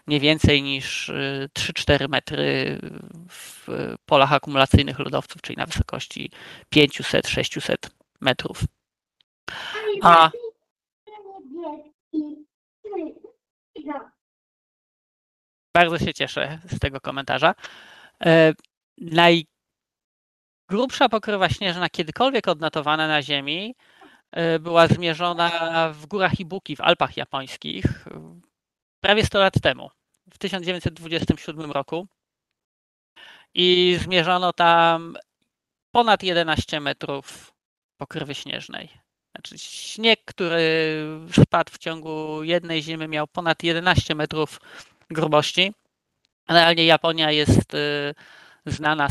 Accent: native